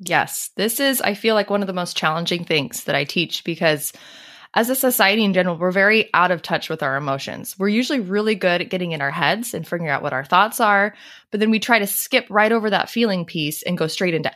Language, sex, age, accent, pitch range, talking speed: English, female, 20-39, American, 165-220 Hz, 250 wpm